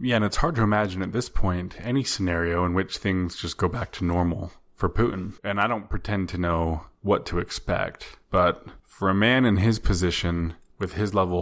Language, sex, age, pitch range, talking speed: English, male, 20-39, 90-105 Hz, 210 wpm